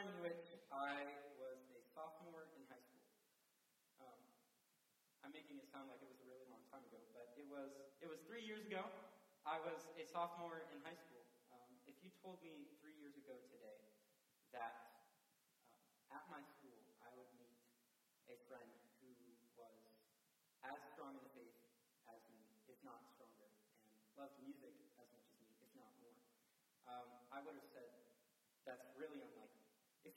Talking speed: 165 wpm